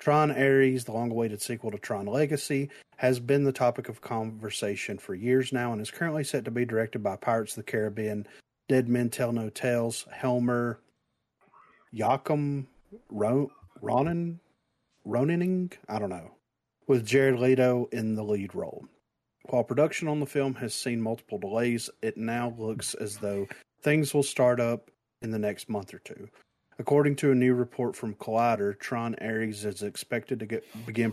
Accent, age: American, 30-49